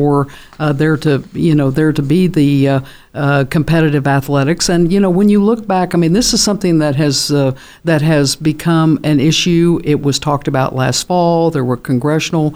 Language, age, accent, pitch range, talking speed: English, 60-79, American, 150-175 Hz, 200 wpm